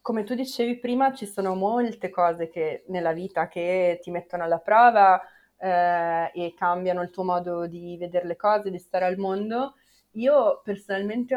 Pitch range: 185-225 Hz